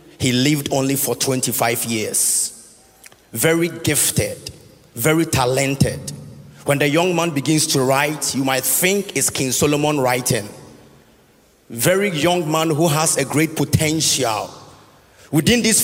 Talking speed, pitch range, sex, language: 130 wpm, 140-210 Hz, male, English